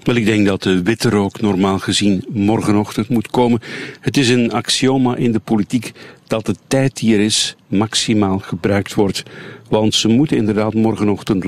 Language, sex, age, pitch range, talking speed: Dutch, male, 50-69, 100-120 Hz, 175 wpm